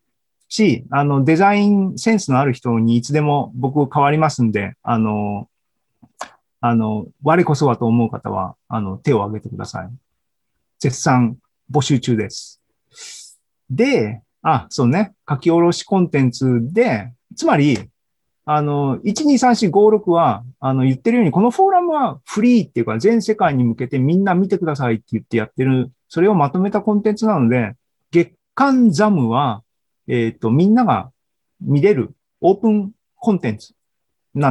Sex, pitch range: male, 115-170 Hz